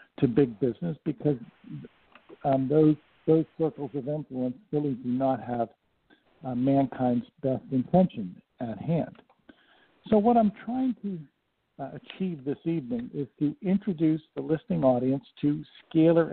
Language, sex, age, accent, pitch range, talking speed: English, male, 60-79, American, 135-185 Hz, 135 wpm